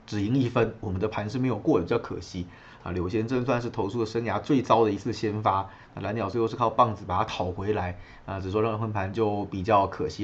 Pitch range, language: 100-130 Hz, Chinese